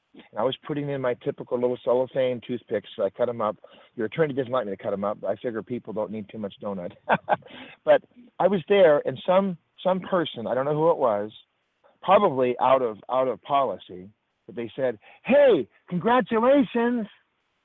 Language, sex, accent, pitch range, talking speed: English, male, American, 115-145 Hz, 195 wpm